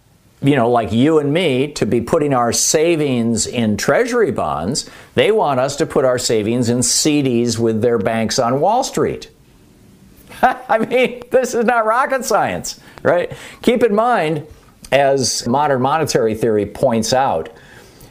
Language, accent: English, American